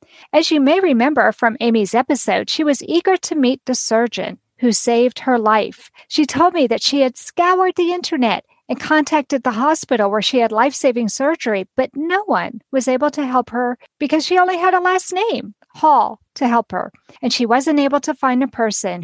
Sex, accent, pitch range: female, American, 240-315 Hz